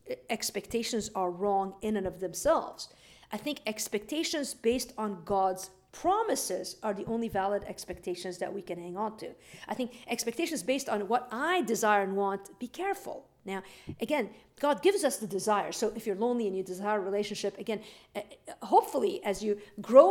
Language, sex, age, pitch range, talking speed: English, female, 50-69, 195-250 Hz, 175 wpm